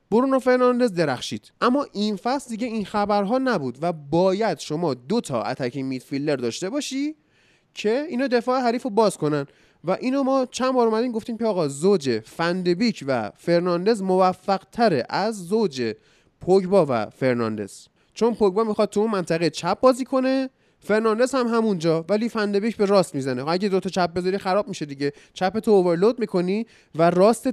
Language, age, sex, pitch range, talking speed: Persian, 20-39, male, 145-220 Hz, 160 wpm